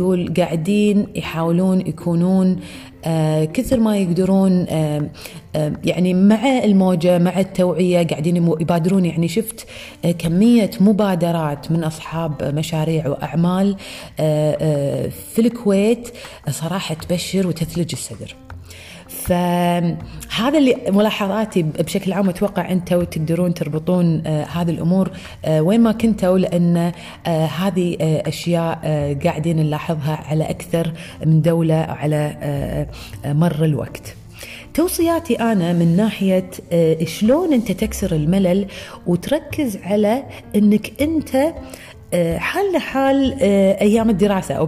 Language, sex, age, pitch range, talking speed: Arabic, female, 30-49, 155-200 Hz, 95 wpm